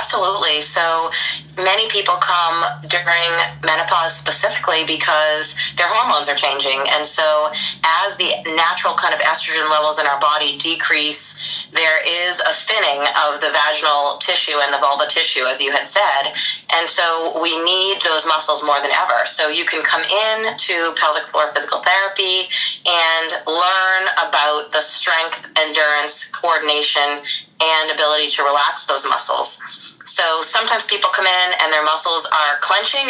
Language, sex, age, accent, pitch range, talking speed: English, female, 30-49, American, 150-180 Hz, 150 wpm